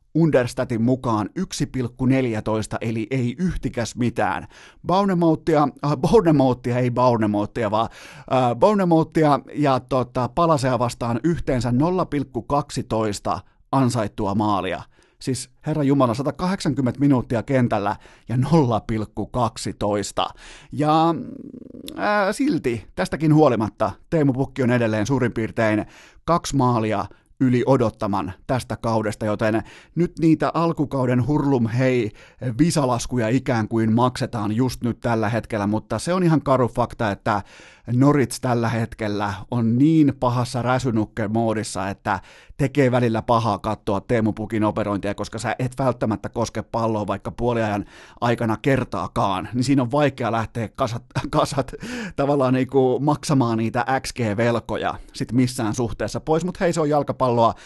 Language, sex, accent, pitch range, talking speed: Finnish, male, native, 110-140 Hz, 120 wpm